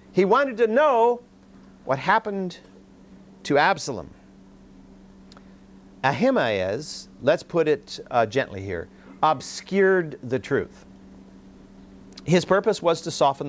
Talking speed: 100 wpm